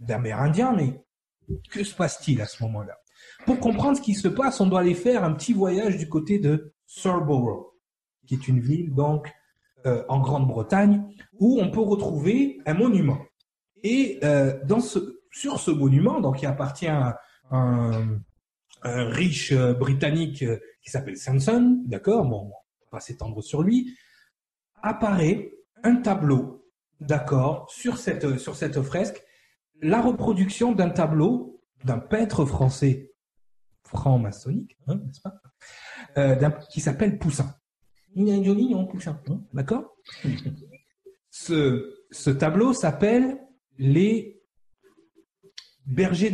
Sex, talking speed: male, 135 wpm